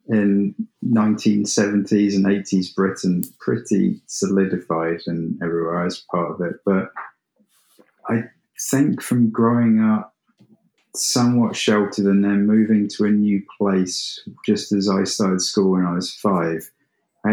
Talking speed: 130 wpm